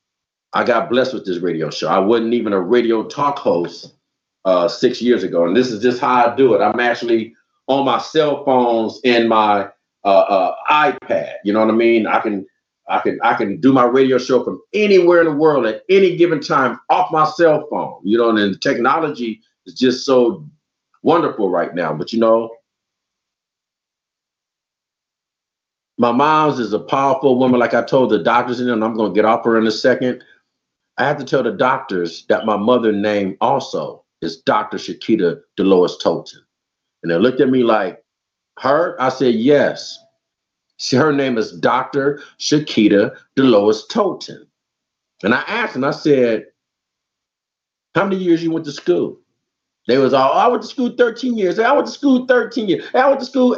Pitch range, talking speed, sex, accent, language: 115-165 Hz, 190 wpm, male, American, English